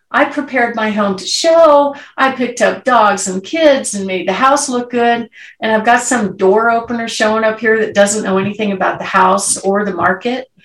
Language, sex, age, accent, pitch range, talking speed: English, female, 50-69, American, 195-250 Hz, 210 wpm